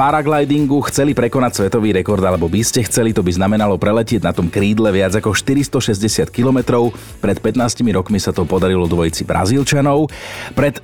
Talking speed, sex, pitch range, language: 160 wpm, male, 105-140 Hz, Slovak